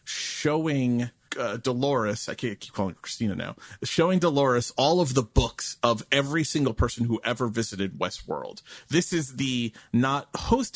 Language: English